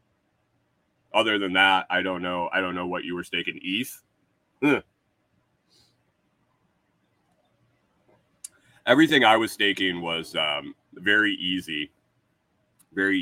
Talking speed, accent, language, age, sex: 105 wpm, American, English, 30-49, male